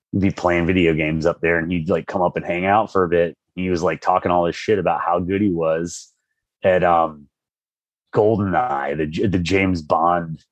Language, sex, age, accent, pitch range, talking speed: English, male, 30-49, American, 85-120 Hz, 210 wpm